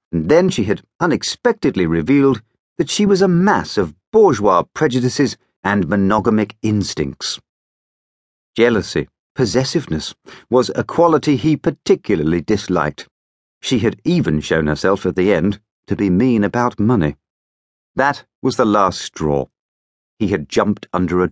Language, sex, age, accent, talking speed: English, male, 40-59, British, 135 wpm